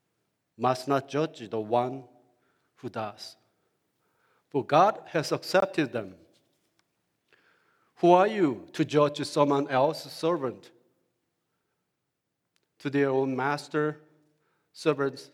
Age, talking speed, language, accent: 50-69, 100 wpm, English, Japanese